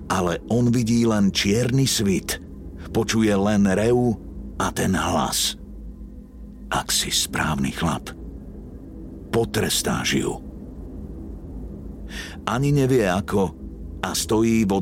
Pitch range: 80-110 Hz